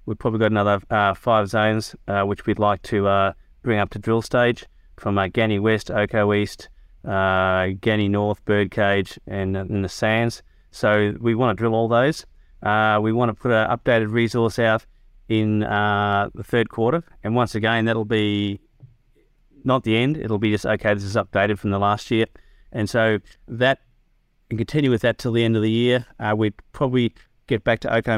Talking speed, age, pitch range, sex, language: 195 wpm, 30-49, 105-115 Hz, male, English